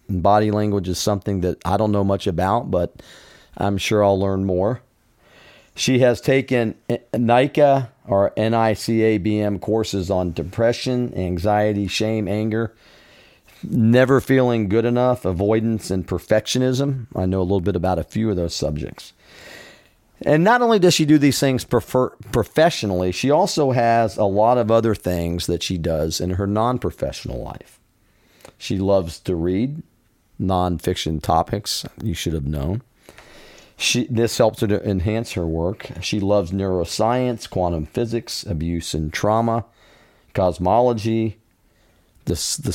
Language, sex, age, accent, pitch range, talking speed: English, male, 40-59, American, 95-120 Hz, 140 wpm